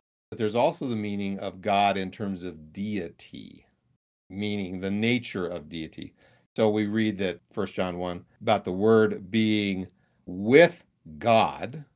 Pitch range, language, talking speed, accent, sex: 90-120 Hz, English, 145 wpm, American, male